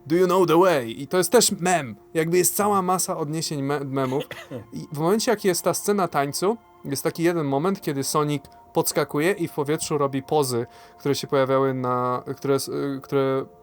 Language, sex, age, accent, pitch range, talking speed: Polish, male, 20-39, native, 125-170 Hz, 190 wpm